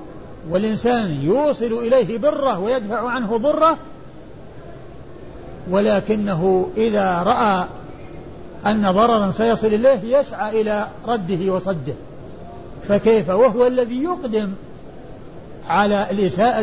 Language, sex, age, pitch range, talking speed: Arabic, male, 50-69, 180-220 Hz, 85 wpm